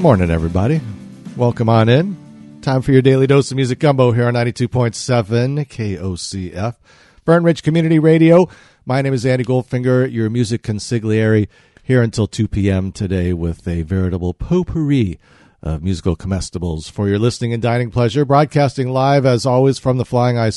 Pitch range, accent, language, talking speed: 95-135 Hz, American, English, 160 wpm